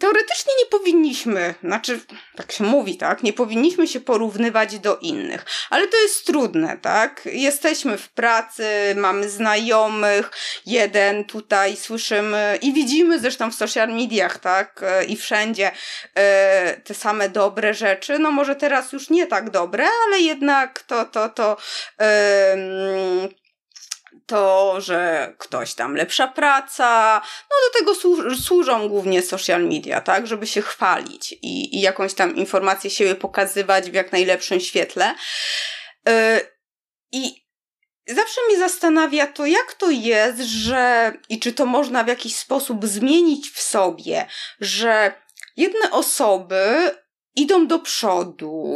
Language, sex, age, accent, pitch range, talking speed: Polish, female, 20-39, native, 200-295 Hz, 135 wpm